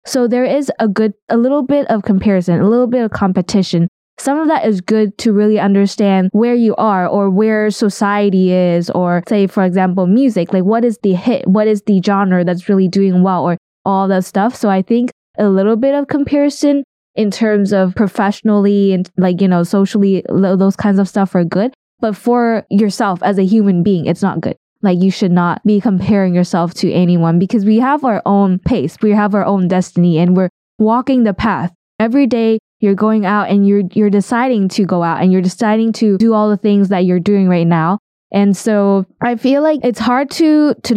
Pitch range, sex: 190-225 Hz, female